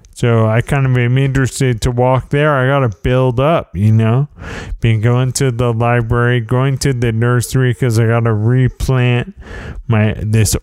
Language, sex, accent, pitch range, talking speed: English, male, American, 105-130 Hz, 180 wpm